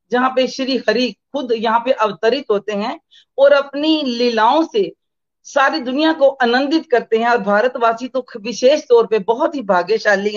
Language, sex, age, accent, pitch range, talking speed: Hindi, female, 40-59, native, 225-280 Hz, 170 wpm